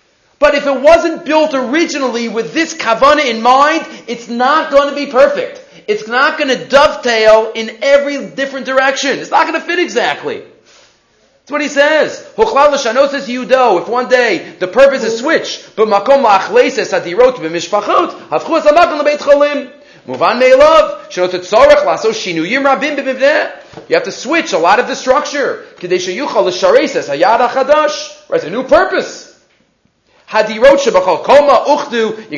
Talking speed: 110 wpm